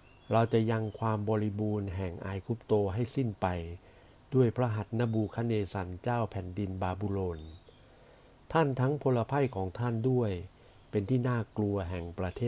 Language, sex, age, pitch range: Thai, male, 60-79, 95-120 Hz